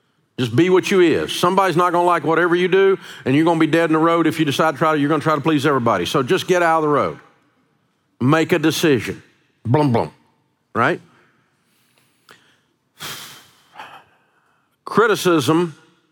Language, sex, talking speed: English, male, 170 wpm